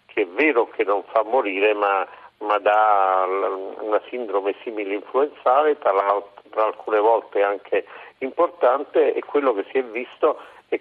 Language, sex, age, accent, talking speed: Italian, male, 50-69, native, 150 wpm